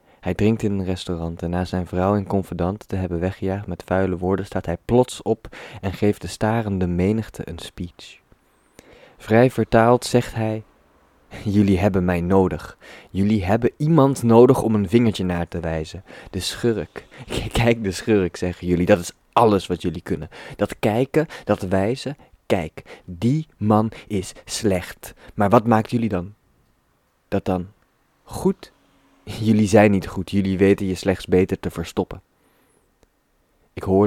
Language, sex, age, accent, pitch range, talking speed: Dutch, male, 20-39, Dutch, 90-110 Hz, 160 wpm